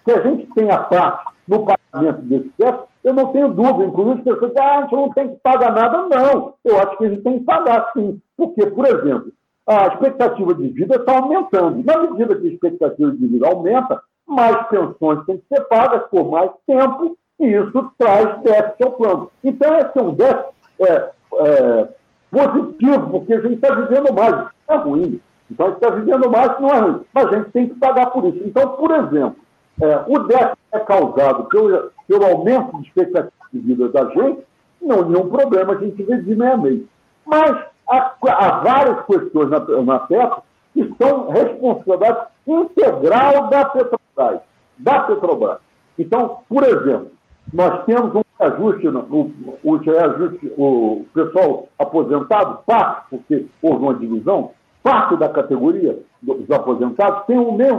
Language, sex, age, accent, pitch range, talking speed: Portuguese, male, 60-79, Brazilian, 205-280 Hz, 180 wpm